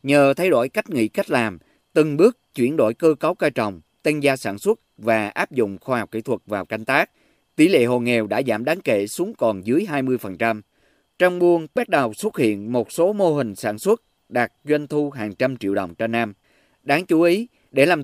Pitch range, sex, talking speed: 115-160 Hz, male, 225 wpm